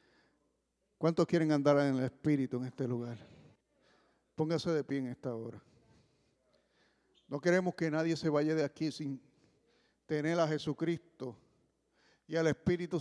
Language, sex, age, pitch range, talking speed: English, male, 50-69, 135-180 Hz, 140 wpm